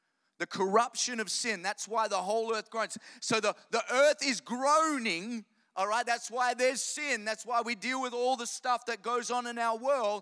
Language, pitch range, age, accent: English, 195-240 Hz, 30-49, Australian